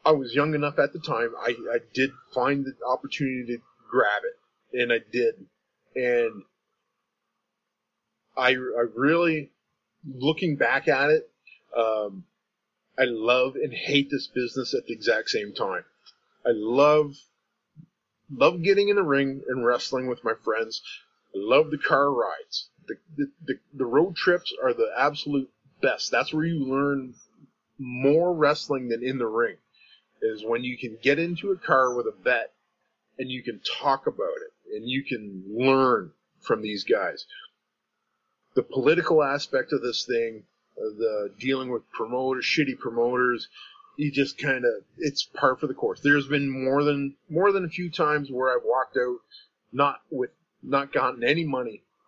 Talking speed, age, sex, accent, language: 160 wpm, 30-49, male, American, English